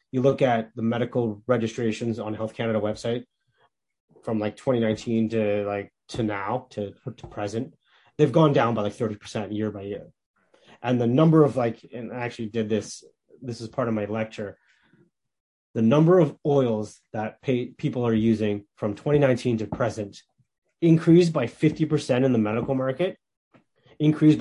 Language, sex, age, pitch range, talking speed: English, male, 30-49, 110-130 Hz, 160 wpm